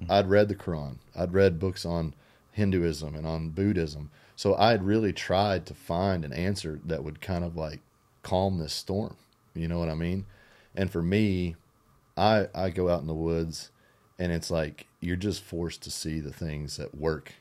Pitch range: 80-95 Hz